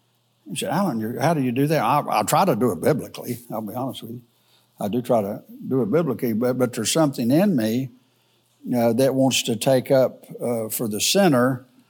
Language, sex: English, male